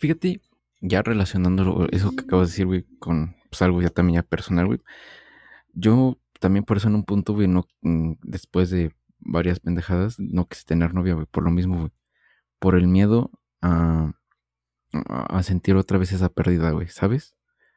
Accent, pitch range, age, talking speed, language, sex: Mexican, 80-95 Hz, 20-39, 170 wpm, Spanish, male